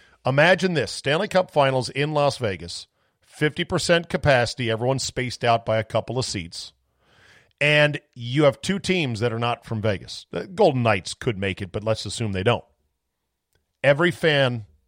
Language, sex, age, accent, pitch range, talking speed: English, male, 40-59, American, 105-145 Hz, 165 wpm